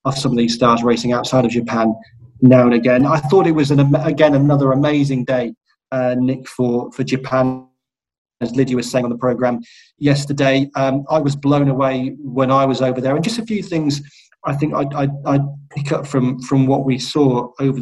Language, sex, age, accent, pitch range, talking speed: English, male, 30-49, British, 130-155 Hz, 200 wpm